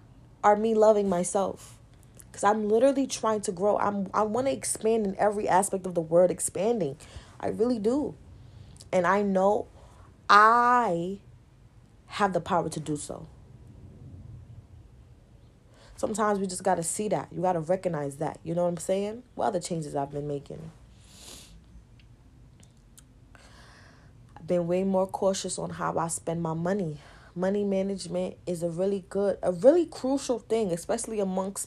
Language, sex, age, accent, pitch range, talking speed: English, female, 30-49, American, 140-215 Hz, 155 wpm